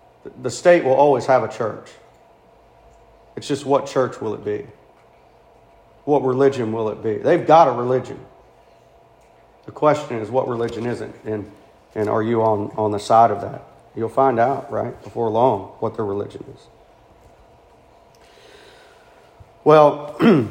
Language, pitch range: English, 125-170 Hz